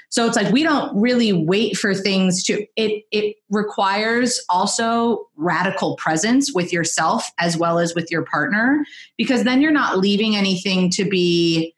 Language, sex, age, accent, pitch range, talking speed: English, female, 30-49, American, 175-220 Hz, 165 wpm